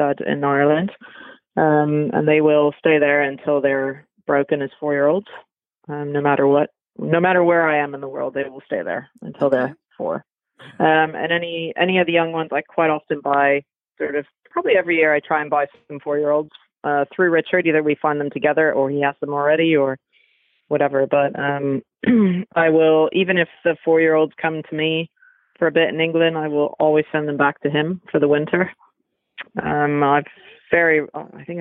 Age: 30-49